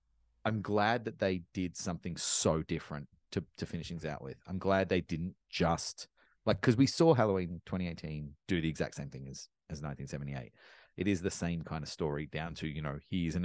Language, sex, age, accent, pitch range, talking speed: English, male, 30-49, Australian, 85-105 Hz, 205 wpm